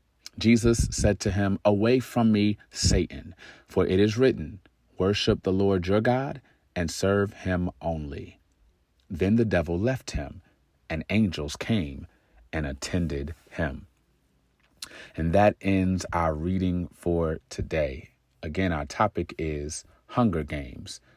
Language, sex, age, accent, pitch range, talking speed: English, male, 40-59, American, 80-110 Hz, 130 wpm